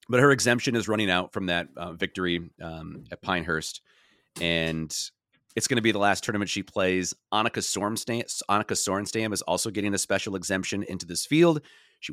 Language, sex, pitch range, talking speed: English, male, 95-130 Hz, 180 wpm